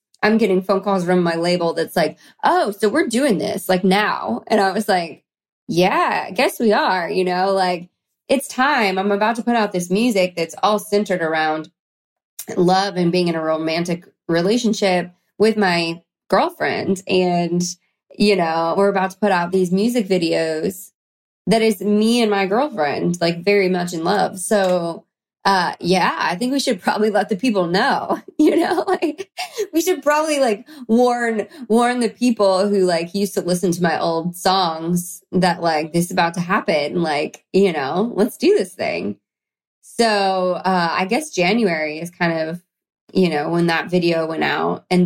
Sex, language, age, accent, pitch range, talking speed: female, English, 20-39, American, 170-215 Hz, 180 wpm